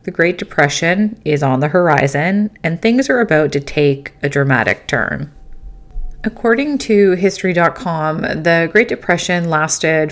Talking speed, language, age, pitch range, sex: 135 wpm, English, 30-49, 150-195 Hz, female